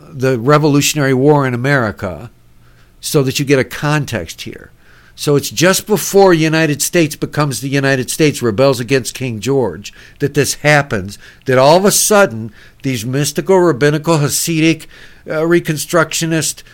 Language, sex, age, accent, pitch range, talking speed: English, male, 60-79, American, 130-160 Hz, 145 wpm